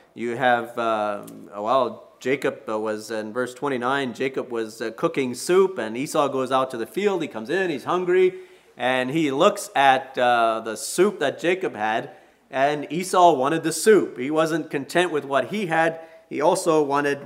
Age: 40-59